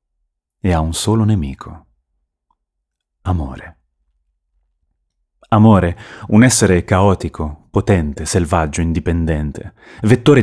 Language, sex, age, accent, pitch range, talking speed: Italian, male, 30-49, native, 75-105 Hz, 80 wpm